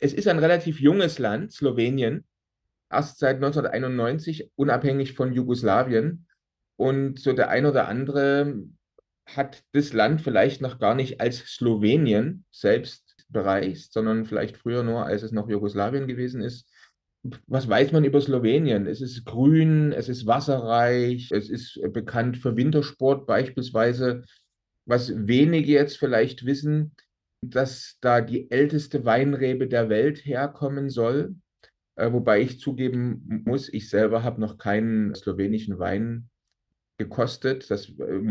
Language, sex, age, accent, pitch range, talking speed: German, male, 30-49, German, 110-140 Hz, 135 wpm